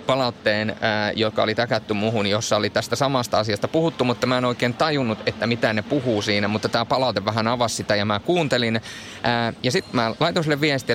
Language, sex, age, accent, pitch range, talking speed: Finnish, male, 30-49, native, 110-140 Hz, 210 wpm